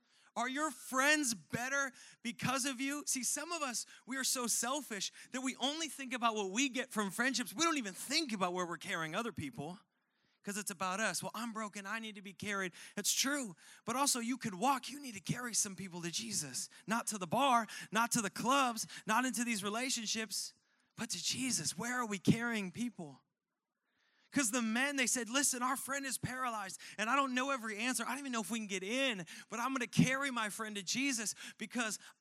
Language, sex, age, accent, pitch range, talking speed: English, male, 30-49, American, 205-255 Hz, 220 wpm